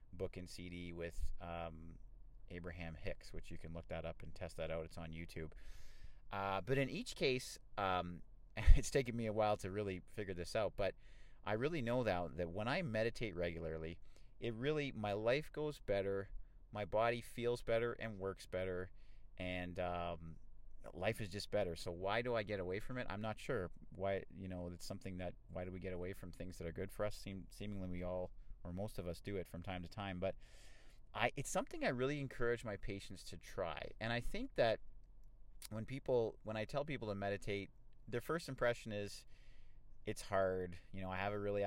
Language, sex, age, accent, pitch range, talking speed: English, male, 30-49, American, 90-115 Hz, 205 wpm